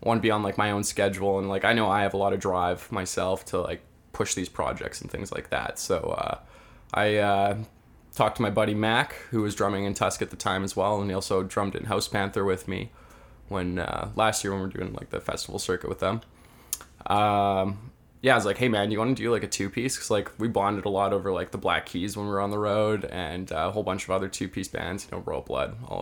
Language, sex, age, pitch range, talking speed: English, male, 20-39, 100-120 Hz, 265 wpm